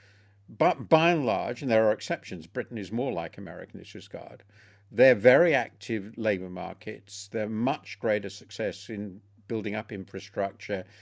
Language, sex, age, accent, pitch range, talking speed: English, male, 50-69, British, 100-120 Hz, 150 wpm